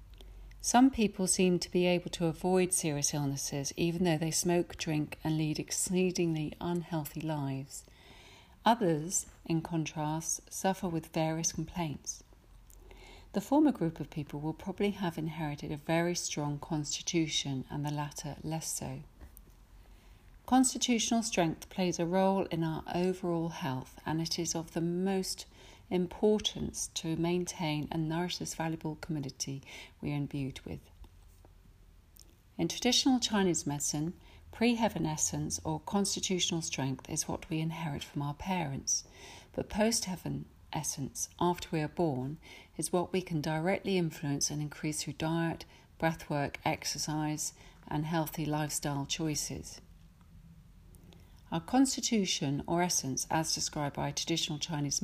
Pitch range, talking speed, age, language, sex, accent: 145-175 Hz, 130 wpm, 40-59, English, female, British